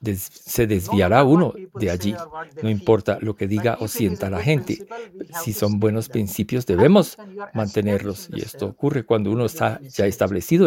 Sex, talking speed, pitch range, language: male, 165 wpm, 110-160 Hz, English